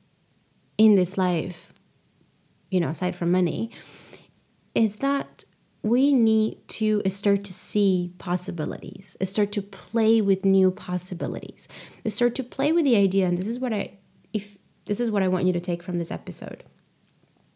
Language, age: English, 20-39